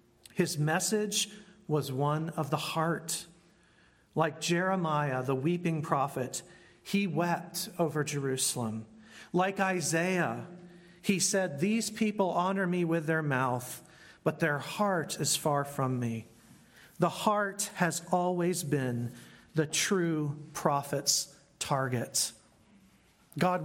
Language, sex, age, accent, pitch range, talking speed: English, male, 40-59, American, 150-185 Hz, 110 wpm